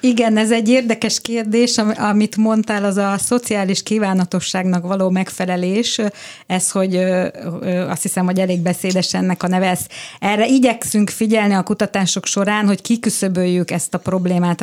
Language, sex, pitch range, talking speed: Hungarian, female, 185-220 Hz, 140 wpm